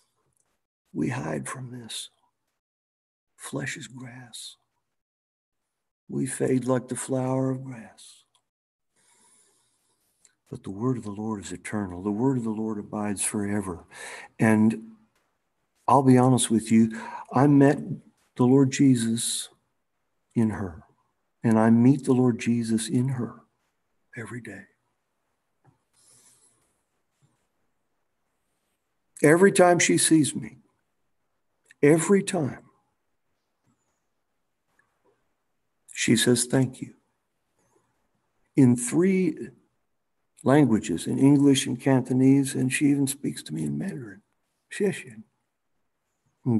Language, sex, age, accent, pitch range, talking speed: English, male, 60-79, American, 110-135 Hz, 100 wpm